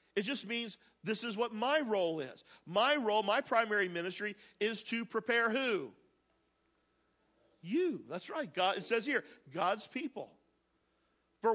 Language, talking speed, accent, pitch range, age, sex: English, 145 wpm, American, 210-275 Hz, 50-69, male